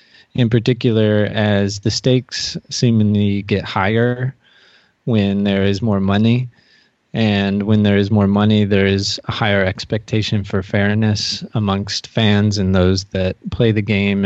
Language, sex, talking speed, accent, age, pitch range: English, male, 145 wpm, American, 20-39, 100-115 Hz